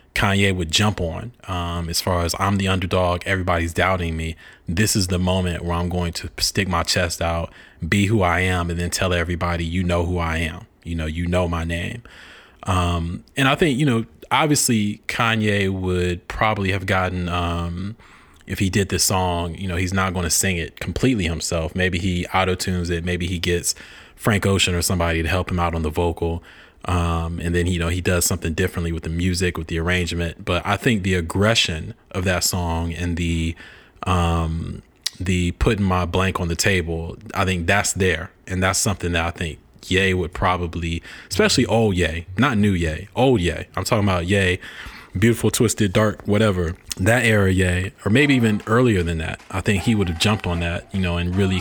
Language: English